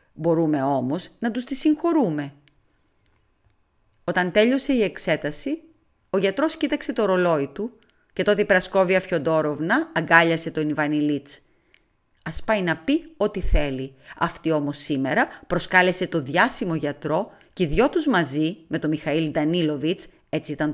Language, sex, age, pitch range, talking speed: Greek, female, 30-49, 150-210 Hz, 140 wpm